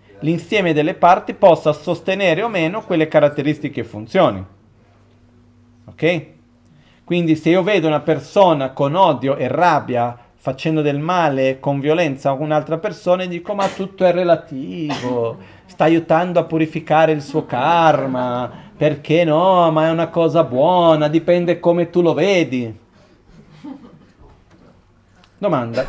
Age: 40-59